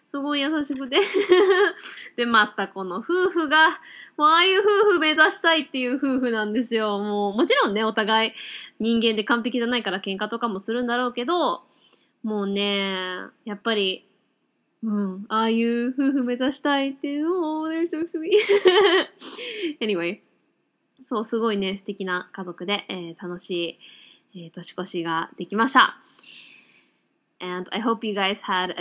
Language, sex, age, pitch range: Japanese, female, 20-39, 190-285 Hz